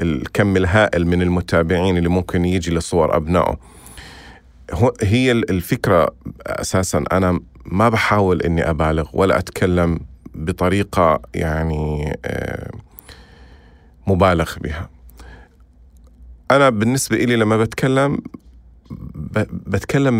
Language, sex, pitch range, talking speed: Arabic, male, 85-120 Hz, 85 wpm